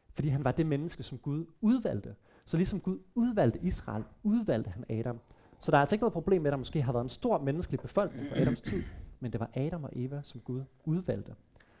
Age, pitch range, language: 30-49, 120-155 Hz, Danish